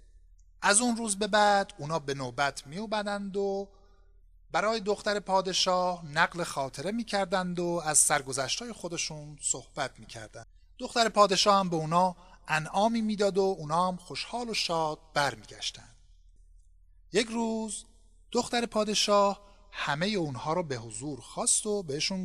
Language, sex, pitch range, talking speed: Persian, male, 135-200 Hz, 130 wpm